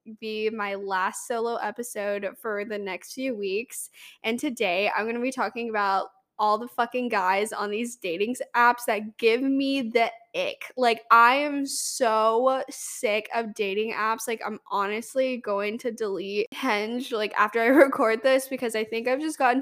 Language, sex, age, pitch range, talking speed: English, female, 10-29, 205-255 Hz, 175 wpm